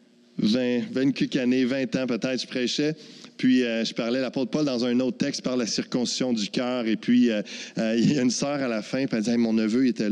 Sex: male